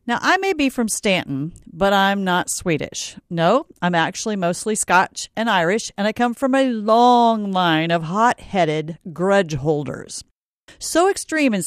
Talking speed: 160 wpm